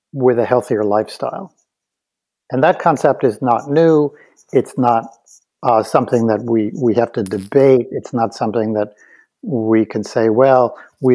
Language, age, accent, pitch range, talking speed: English, 50-69, American, 110-130 Hz, 155 wpm